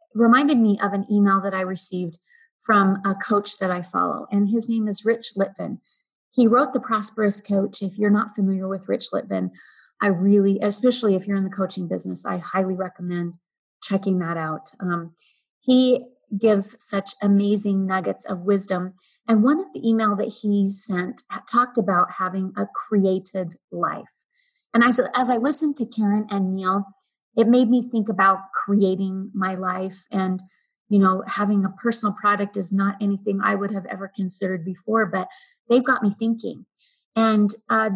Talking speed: 175 wpm